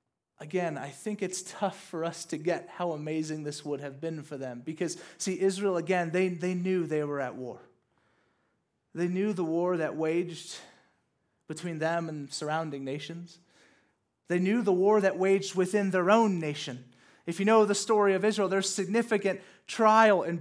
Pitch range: 155-210 Hz